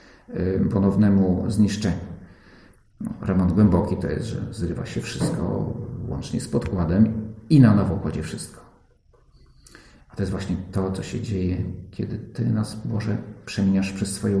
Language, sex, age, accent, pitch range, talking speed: Polish, male, 50-69, native, 100-120 Hz, 140 wpm